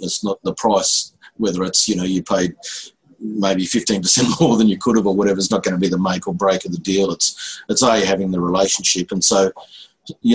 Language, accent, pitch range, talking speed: English, Australian, 90-105 Hz, 230 wpm